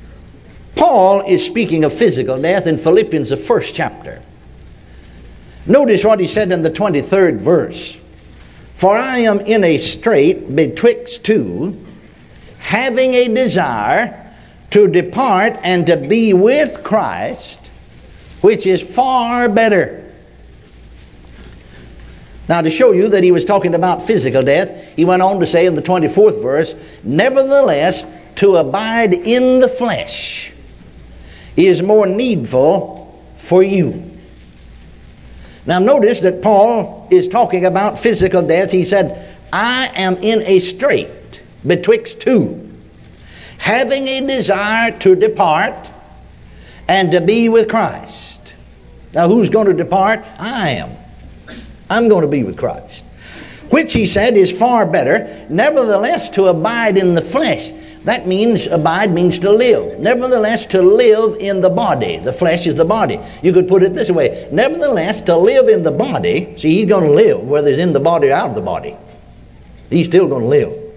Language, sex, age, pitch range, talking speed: English, male, 60-79, 150-230 Hz, 145 wpm